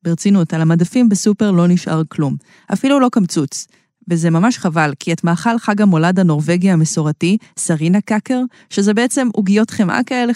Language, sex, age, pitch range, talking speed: Hebrew, female, 20-39, 165-225 Hz, 155 wpm